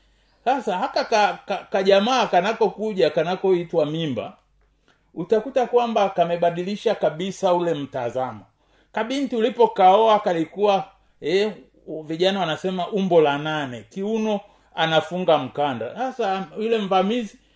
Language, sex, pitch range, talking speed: Swahili, male, 170-225 Hz, 100 wpm